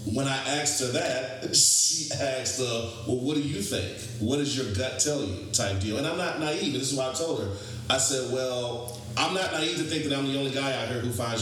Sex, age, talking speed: male, 30-49, 250 wpm